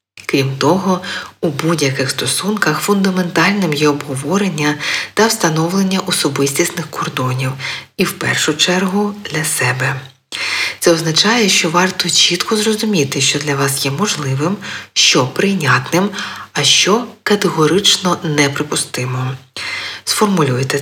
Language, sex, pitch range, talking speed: Ukrainian, female, 140-185 Hz, 105 wpm